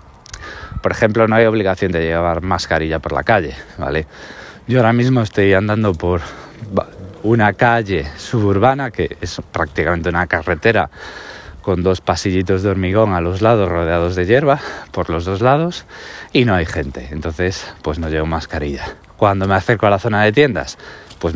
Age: 20-39